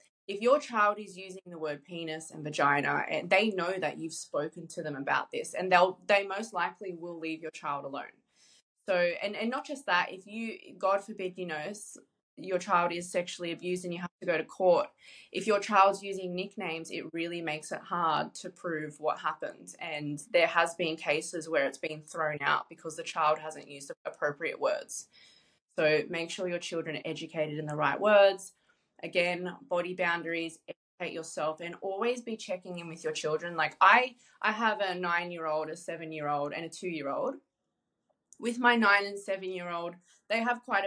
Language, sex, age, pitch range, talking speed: English, female, 20-39, 165-195 Hz, 190 wpm